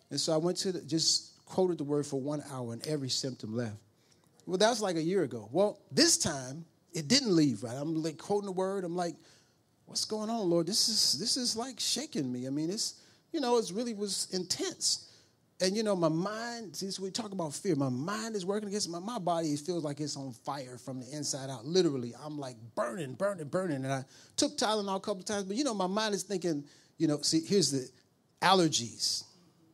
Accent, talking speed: American, 230 wpm